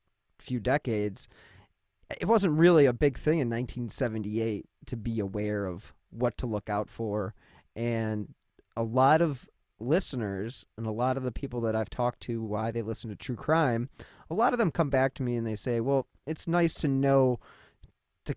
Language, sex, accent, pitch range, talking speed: English, male, American, 105-135 Hz, 185 wpm